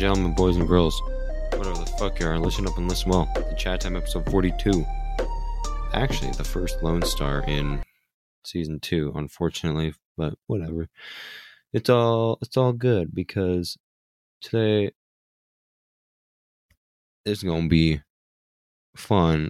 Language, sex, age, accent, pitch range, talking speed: English, male, 20-39, American, 75-95 Hz, 125 wpm